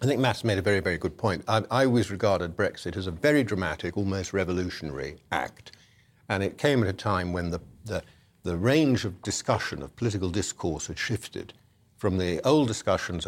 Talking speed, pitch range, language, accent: 195 wpm, 90-125 Hz, English, British